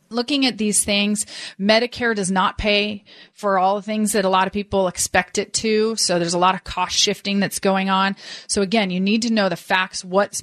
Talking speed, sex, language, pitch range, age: 225 wpm, female, English, 185-230 Hz, 30-49